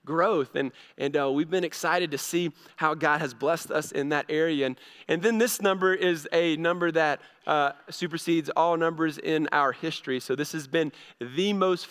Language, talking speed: English, 195 wpm